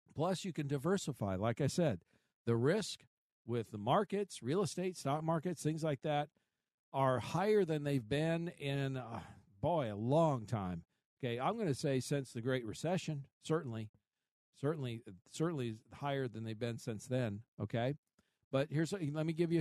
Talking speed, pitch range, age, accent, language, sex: 170 wpm, 120-155 Hz, 50-69, American, English, male